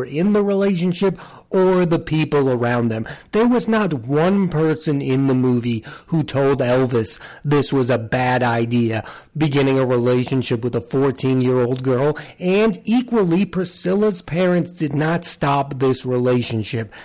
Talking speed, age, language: 140 wpm, 40-59, English